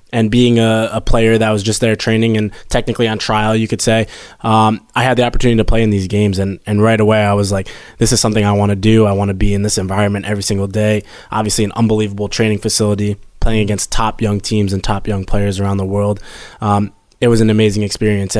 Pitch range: 105-115 Hz